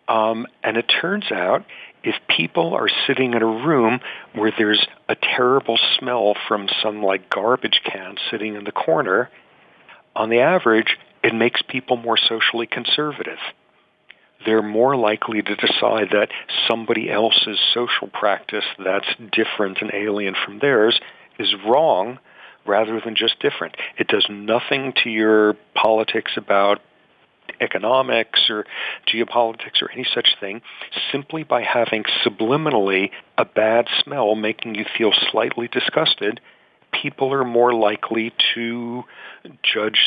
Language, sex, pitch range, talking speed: English, male, 105-120 Hz, 130 wpm